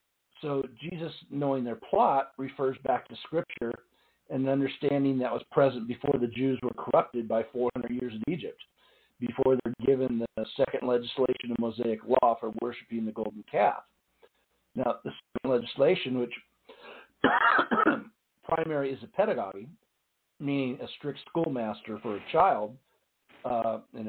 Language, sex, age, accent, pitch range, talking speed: English, male, 50-69, American, 120-140 Hz, 140 wpm